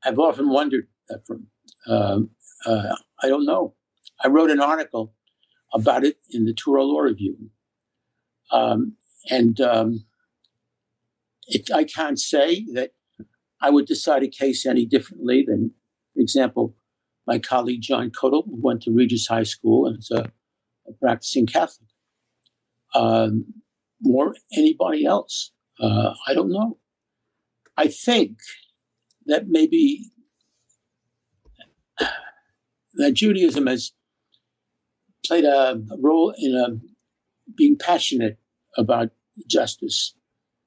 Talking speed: 105 wpm